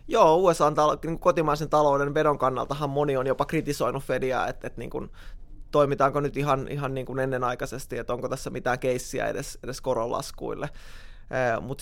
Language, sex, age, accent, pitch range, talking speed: Finnish, male, 20-39, native, 130-145 Hz, 155 wpm